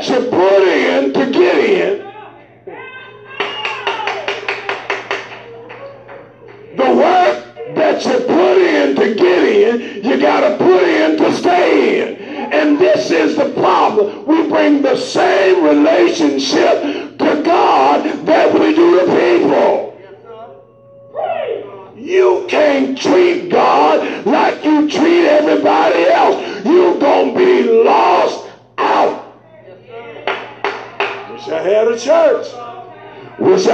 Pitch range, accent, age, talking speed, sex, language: 295-410 Hz, American, 50-69, 105 wpm, male, English